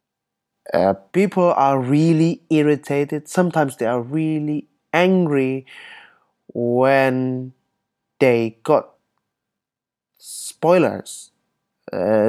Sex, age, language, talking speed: male, 20-39, Indonesian, 75 wpm